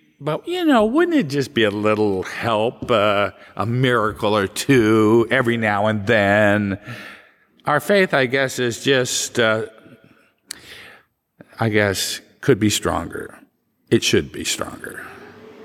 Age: 50-69